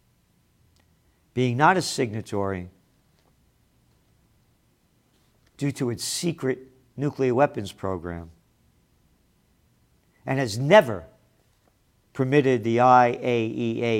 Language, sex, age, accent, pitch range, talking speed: English, male, 50-69, American, 85-130 Hz, 75 wpm